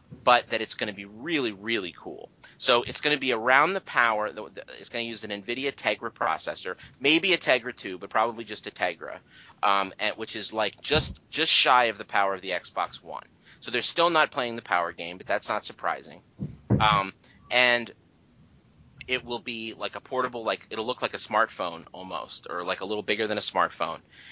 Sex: male